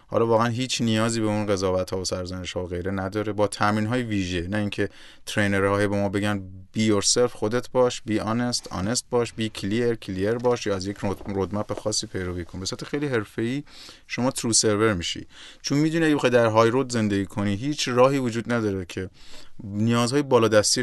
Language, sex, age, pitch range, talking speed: Persian, male, 30-49, 95-120 Hz, 200 wpm